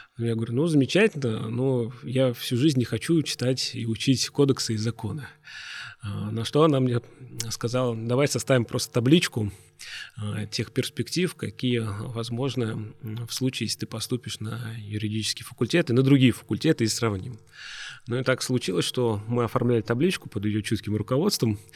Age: 30-49